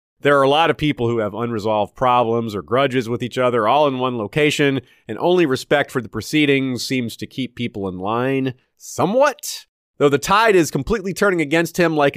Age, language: 30-49, English